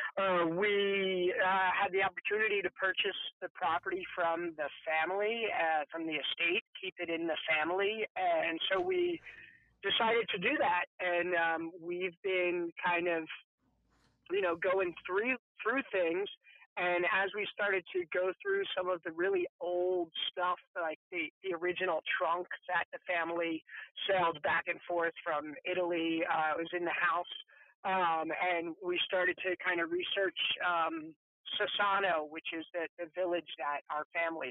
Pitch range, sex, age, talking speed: 170-205 Hz, male, 40-59, 160 wpm